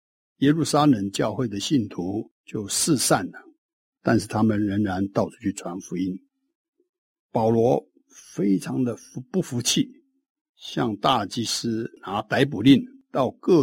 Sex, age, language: male, 60-79, Chinese